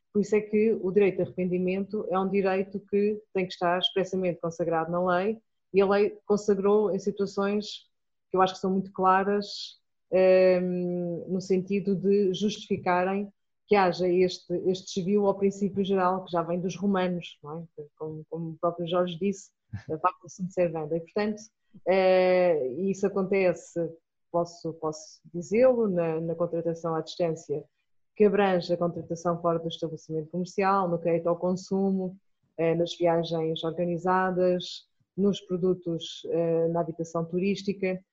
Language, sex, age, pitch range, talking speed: Portuguese, female, 20-39, 170-195 Hz, 150 wpm